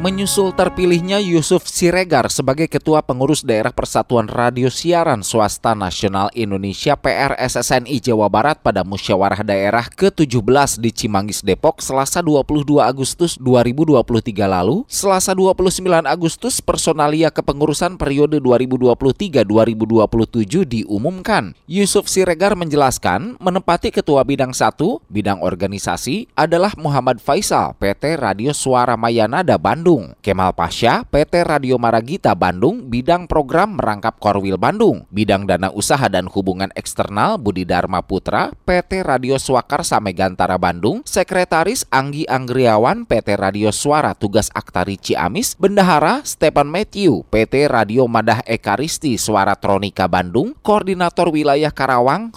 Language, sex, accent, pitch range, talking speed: Indonesian, male, native, 105-165 Hz, 115 wpm